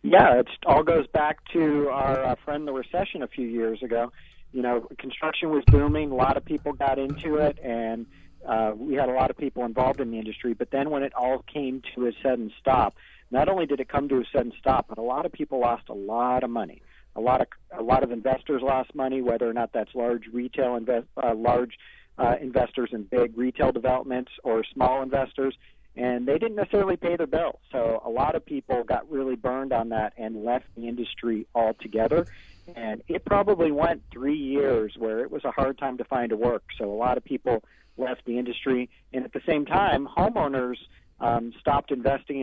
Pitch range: 120-140 Hz